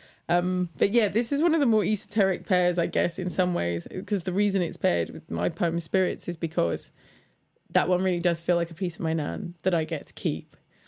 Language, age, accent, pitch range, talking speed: English, 20-39, British, 170-210 Hz, 235 wpm